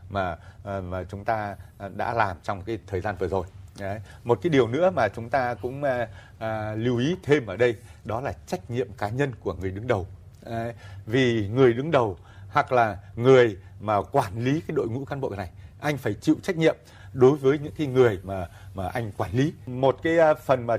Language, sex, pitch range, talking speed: Vietnamese, male, 100-130 Hz, 200 wpm